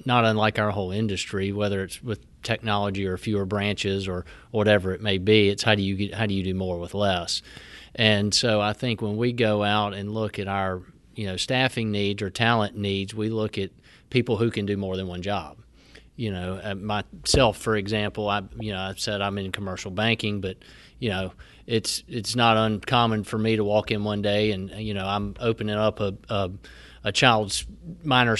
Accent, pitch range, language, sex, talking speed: American, 100-115 Hz, English, male, 210 wpm